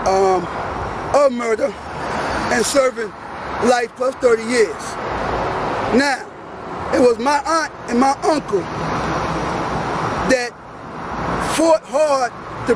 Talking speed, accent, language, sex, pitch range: 95 wpm, American, English, male, 245-290 Hz